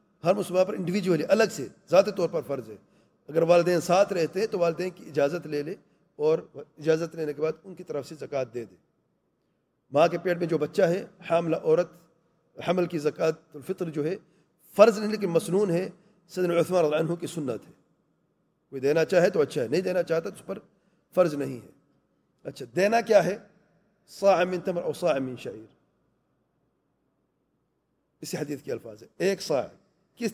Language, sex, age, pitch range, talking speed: English, male, 40-59, 165-200 Hz, 105 wpm